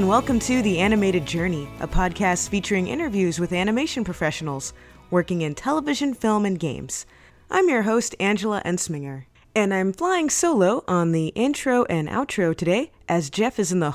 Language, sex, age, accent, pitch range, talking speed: English, female, 20-39, American, 175-240 Hz, 170 wpm